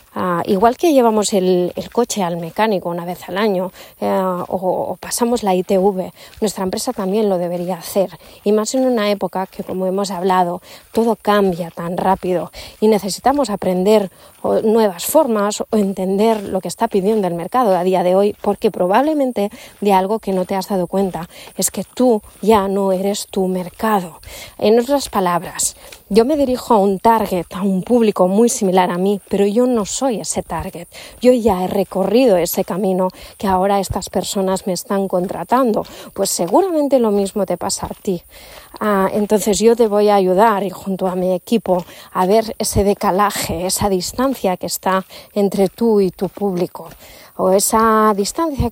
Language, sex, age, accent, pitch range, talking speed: Spanish, female, 20-39, Spanish, 185-220 Hz, 175 wpm